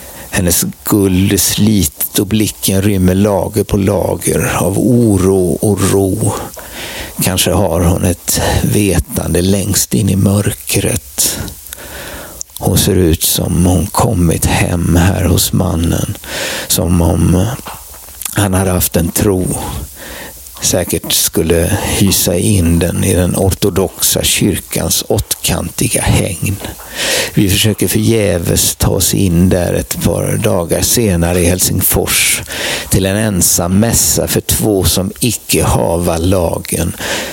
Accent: native